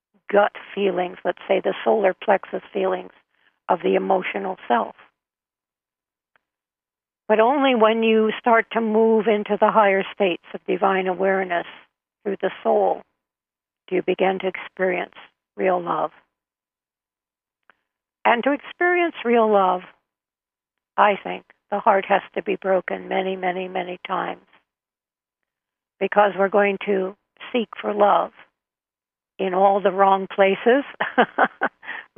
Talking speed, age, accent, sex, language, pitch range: 120 wpm, 50-69, American, female, English, 185-205 Hz